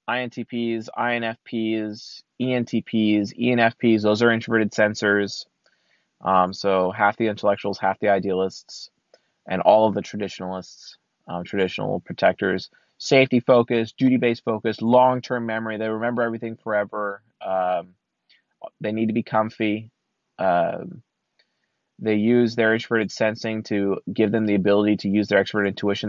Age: 20-39